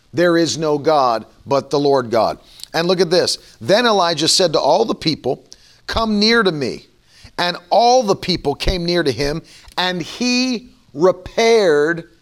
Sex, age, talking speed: male, 40-59, 165 wpm